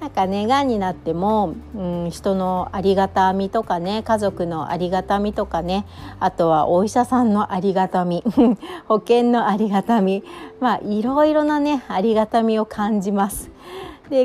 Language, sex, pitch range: Japanese, female, 170-240 Hz